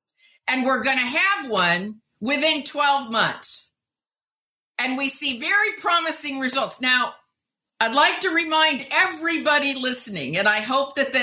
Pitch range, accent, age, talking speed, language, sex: 245-315 Hz, American, 50-69, 135 wpm, English, female